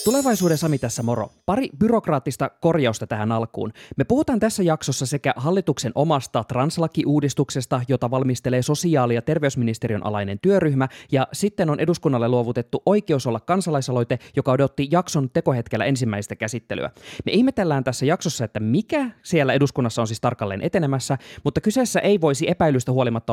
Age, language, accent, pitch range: 20-39, Finnish, native, 120-155 Hz